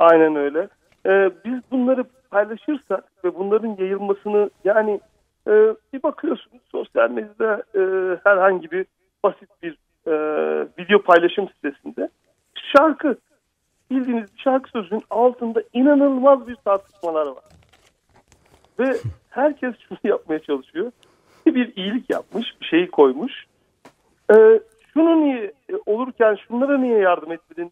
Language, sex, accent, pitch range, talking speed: Turkish, male, native, 160-255 Hz, 115 wpm